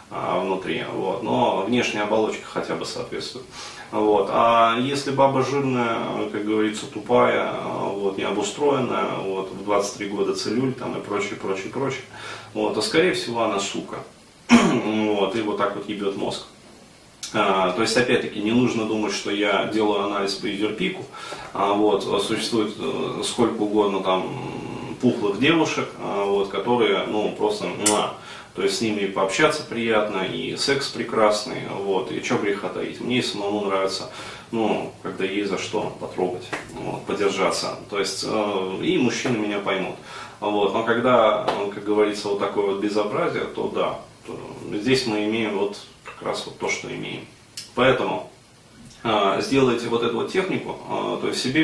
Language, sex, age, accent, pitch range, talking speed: Russian, male, 30-49, native, 100-115 Hz, 155 wpm